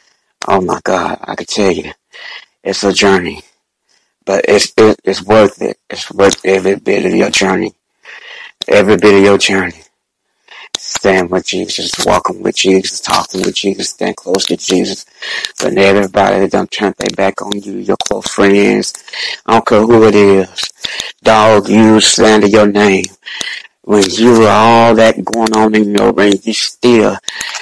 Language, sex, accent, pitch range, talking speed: English, male, American, 100-110 Hz, 165 wpm